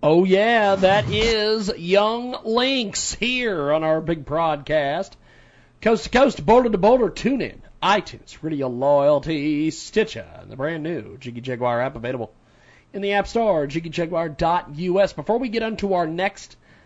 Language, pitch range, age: English, 155-210 Hz, 40-59